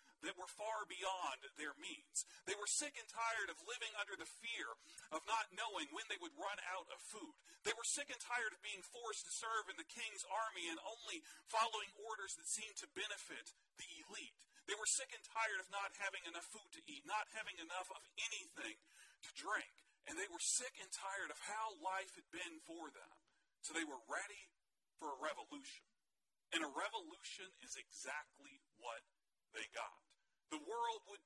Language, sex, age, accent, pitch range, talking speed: English, male, 40-59, American, 200-310 Hz, 190 wpm